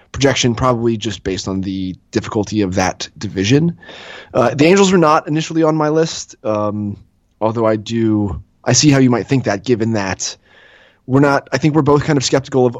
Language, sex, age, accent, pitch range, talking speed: English, male, 30-49, American, 100-130 Hz, 195 wpm